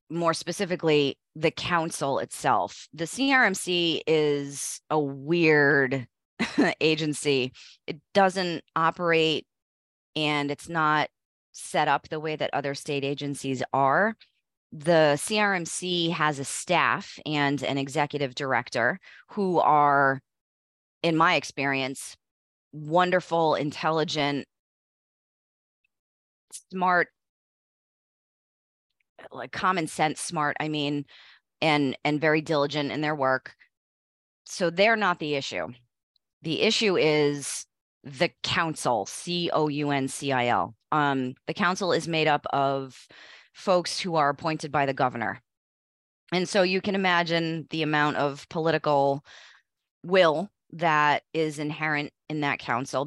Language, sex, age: English, female, 30-49